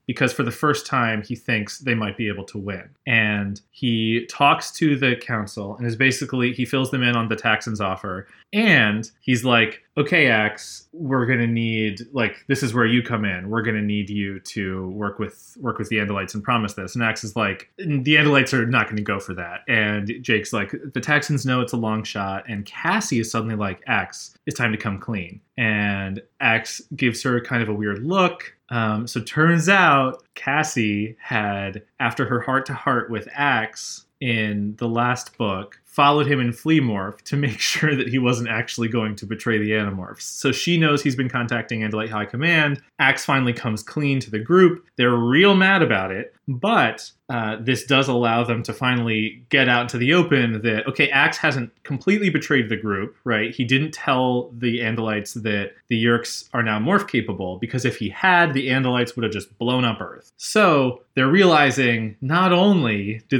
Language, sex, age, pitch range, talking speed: English, male, 20-39, 110-135 Hz, 200 wpm